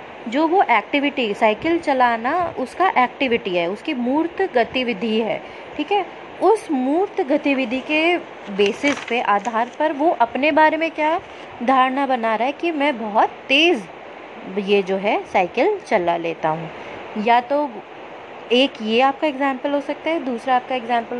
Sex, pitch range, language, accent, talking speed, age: female, 220-290 Hz, Hindi, native, 155 wpm, 20-39